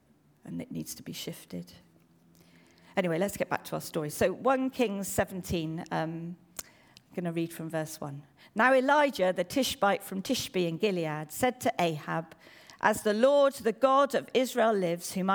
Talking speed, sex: 175 wpm, female